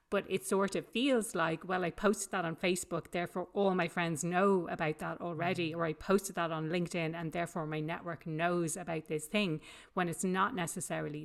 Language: English